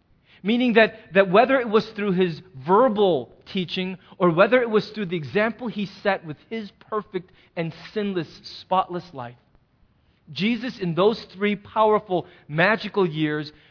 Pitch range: 185-250 Hz